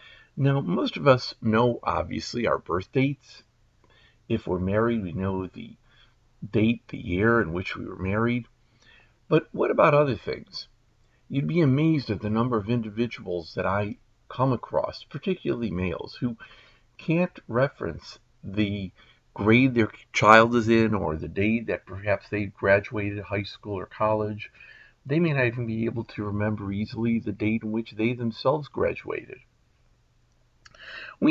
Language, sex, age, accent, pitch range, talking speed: English, male, 50-69, American, 105-140 Hz, 150 wpm